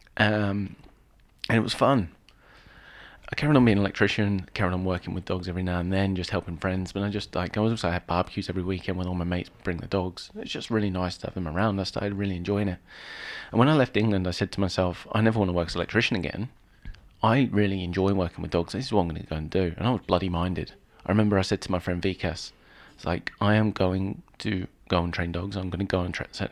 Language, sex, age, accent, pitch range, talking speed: English, male, 30-49, British, 90-105 Hz, 260 wpm